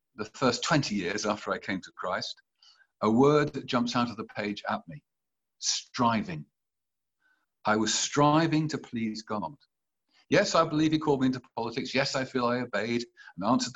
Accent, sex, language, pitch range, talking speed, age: British, male, English, 110-150 Hz, 180 wpm, 50-69